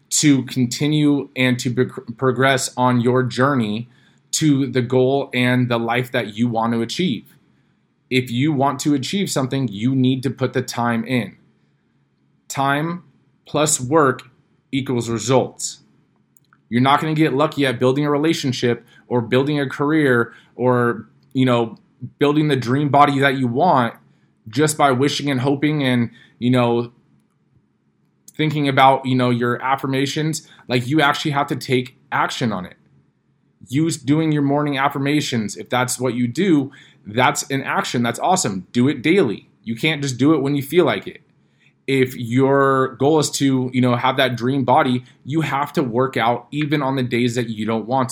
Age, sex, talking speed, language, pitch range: 20-39, male, 170 wpm, English, 125-145 Hz